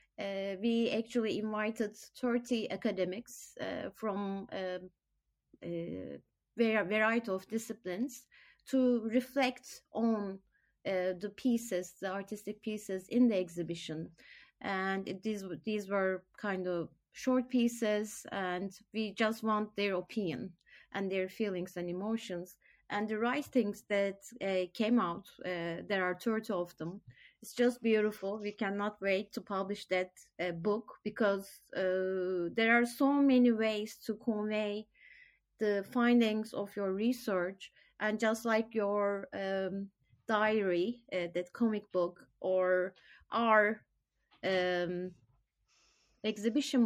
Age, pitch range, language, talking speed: 30-49, 185-225 Hz, Turkish, 125 wpm